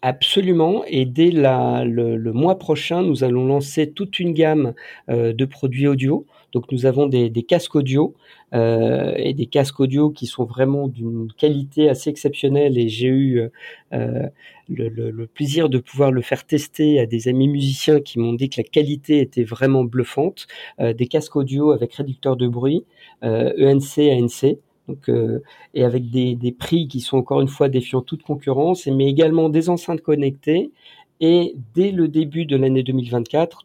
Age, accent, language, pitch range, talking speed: 40-59, French, French, 125-155 Hz, 175 wpm